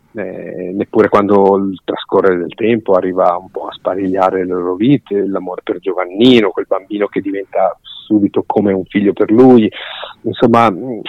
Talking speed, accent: 155 wpm, native